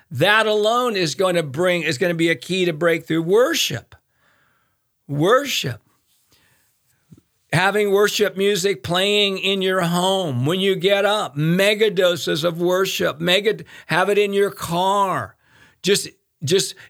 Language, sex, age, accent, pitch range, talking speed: English, male, 50-69, American, 165-200 Hz, 140 wpm